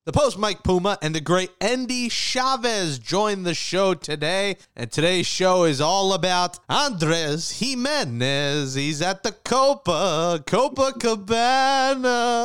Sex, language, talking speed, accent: male, English, 130 wpm, American